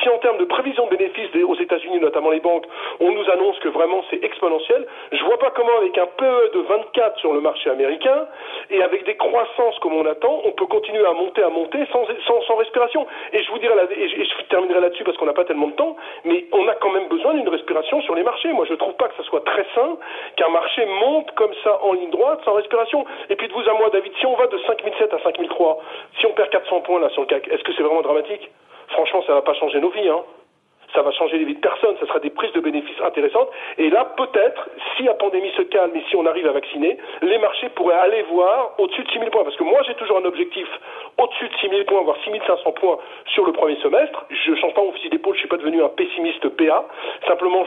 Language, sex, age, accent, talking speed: French, male, 40-59, French, 255 wpm